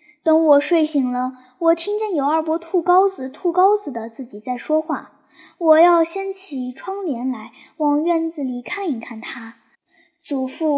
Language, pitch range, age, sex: Chinese, 265-365 Hz, 10-29, male